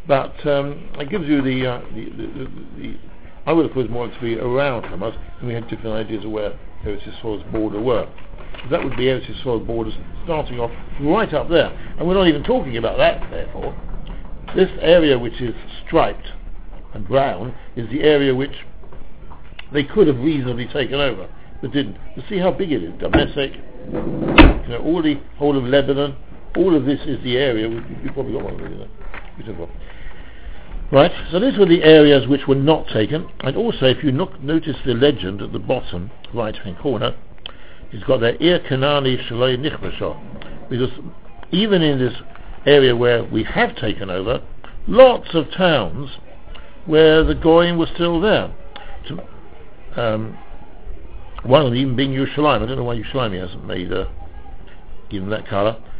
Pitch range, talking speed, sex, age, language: 110-145 Hz, 175 wpm, male, 60-79, English